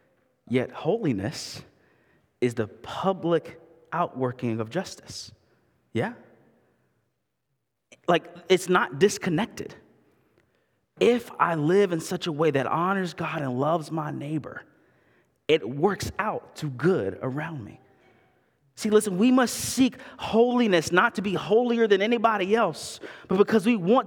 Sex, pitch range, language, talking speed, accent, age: male, 150-225 Hz, English, 125 wpm, American, 30-49